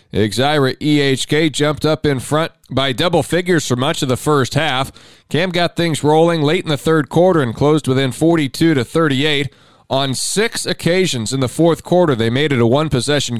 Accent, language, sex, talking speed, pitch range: American, English, male, 195 wpm, 120-150 Hz